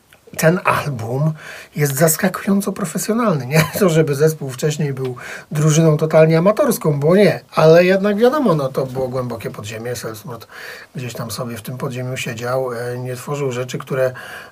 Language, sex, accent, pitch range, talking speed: Polish, male, native, 125-160 Hz, 150 wpm